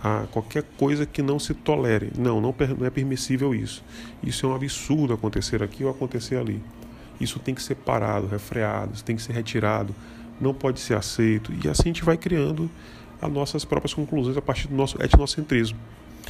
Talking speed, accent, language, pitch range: 185 wpm, Brazilian, Portuguese, 110-125 Hz